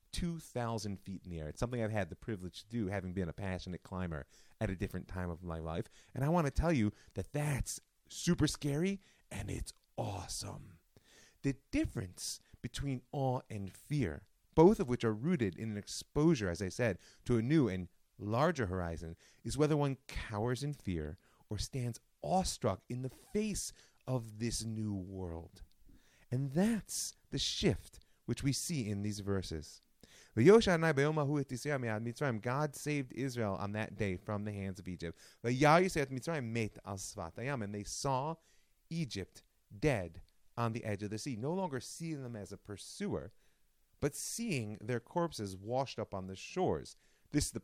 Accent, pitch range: American, 95-135 Hz